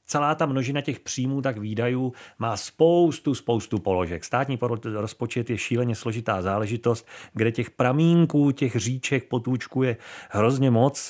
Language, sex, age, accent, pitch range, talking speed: Czech, male, 40-59, native, 110-140 Hz, 135 wpm